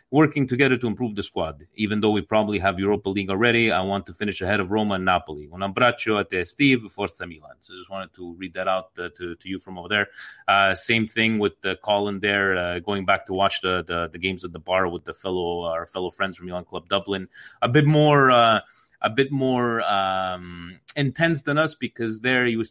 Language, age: Italian, 30-49